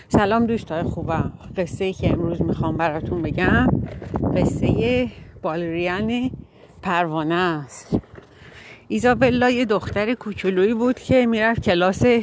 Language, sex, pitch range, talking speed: Persian, female, 180-240 Hz, 110 wpm